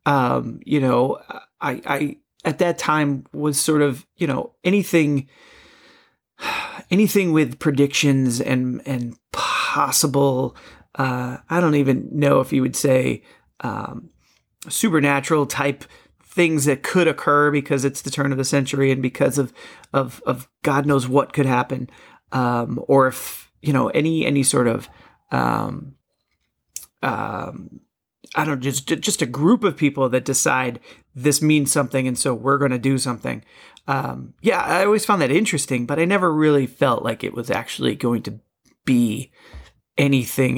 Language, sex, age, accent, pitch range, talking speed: English, male, 40-59, American, 130-150 Hz, 155 wpm